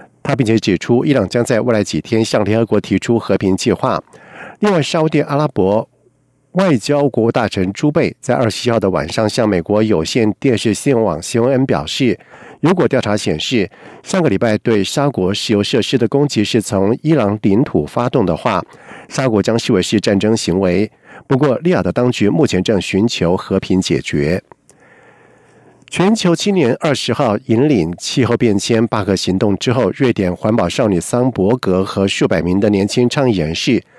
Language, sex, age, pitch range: German, male, 50-69, 100-130 Hz